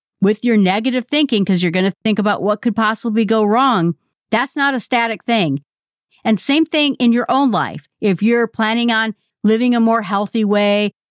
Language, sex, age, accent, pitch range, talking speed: English, female, 50-69, American, 185-250 Hz, 195 wpm